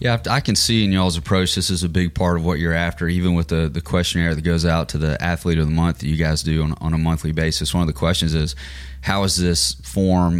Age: 30-49